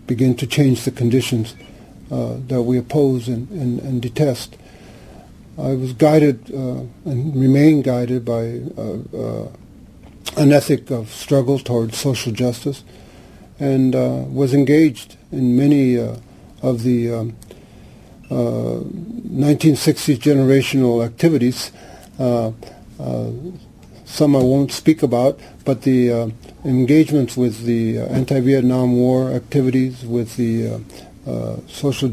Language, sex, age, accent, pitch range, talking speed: English, male, 50-69, American, 120-140 Hz, 120 wpm